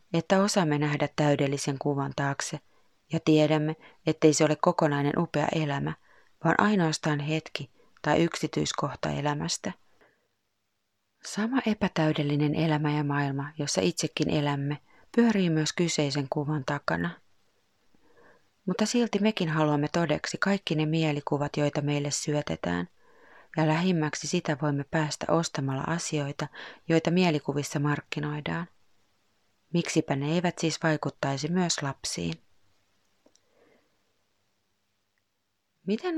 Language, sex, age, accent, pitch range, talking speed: Finnish, female, 30-49, native, 140-165 Hz, 105 wpm